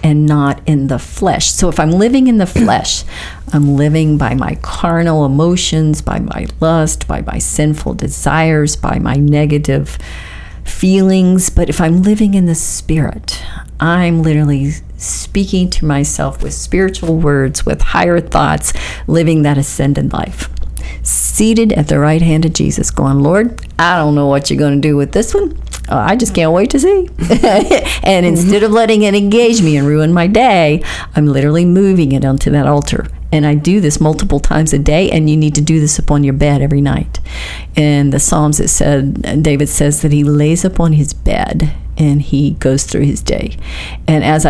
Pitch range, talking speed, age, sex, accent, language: 140-170 Hz, 180 wpm, 50-69, female, American, English